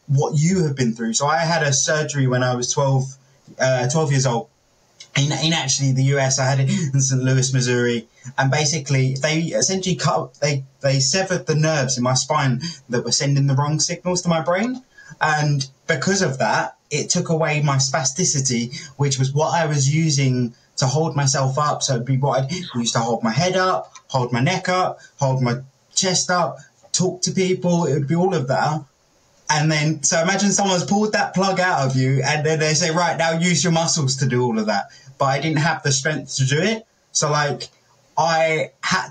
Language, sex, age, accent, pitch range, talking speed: English, male, 20-39, British, 135-165 Hz, 210 wpm